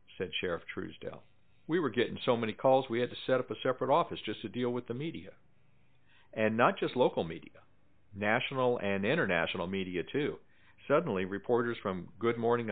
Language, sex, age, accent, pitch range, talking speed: English, male, 50-69, American, 95-120 Hz, 180 wpm